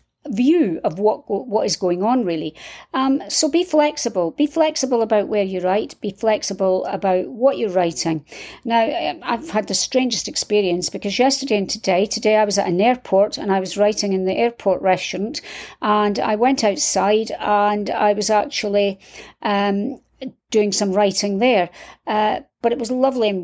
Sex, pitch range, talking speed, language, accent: female, 195-250 Hz, 170 wpm, English, British